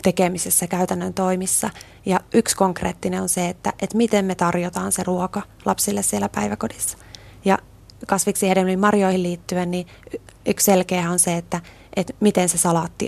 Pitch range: 170-190 Hz